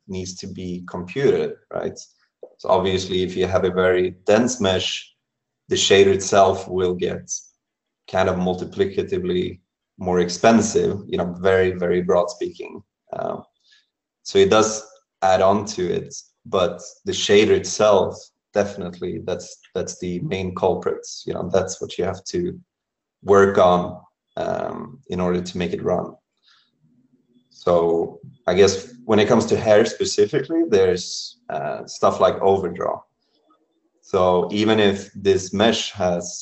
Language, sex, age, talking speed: English, male, 30-49, 140 wpm